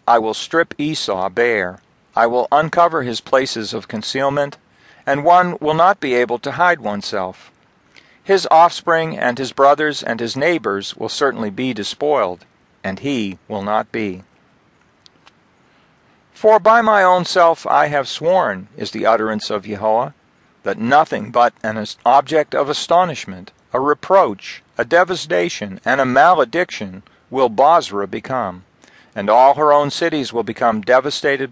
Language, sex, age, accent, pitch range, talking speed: English, male, 50-69, American, 110-155 Hz, 145 wpm